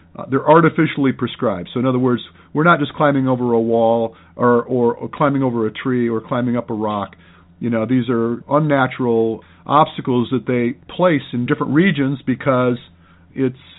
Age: 50-69